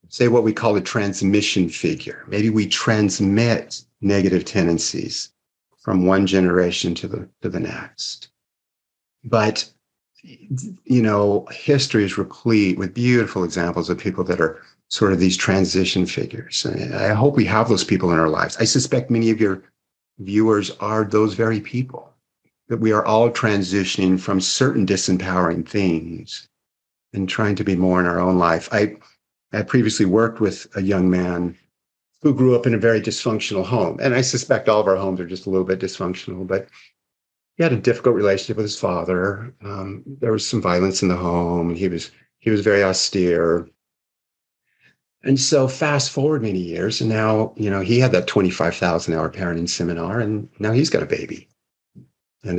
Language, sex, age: English, male, 50-69